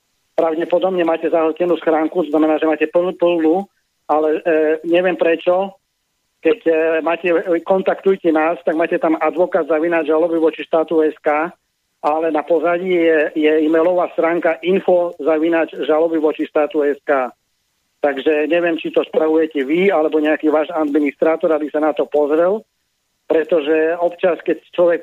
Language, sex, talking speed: Slovak, male, 145 wpm